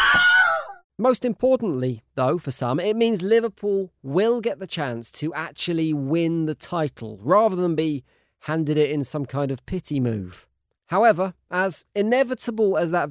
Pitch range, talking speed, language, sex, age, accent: 150-210 Hz, 150 wpm, English, male, 40-59, British